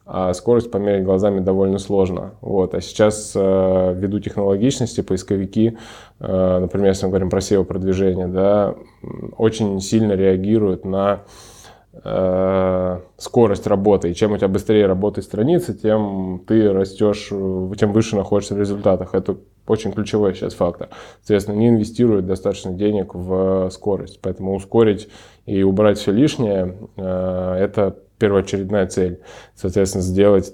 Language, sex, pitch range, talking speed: Russian, male, 95-105 Hz, 125 wpm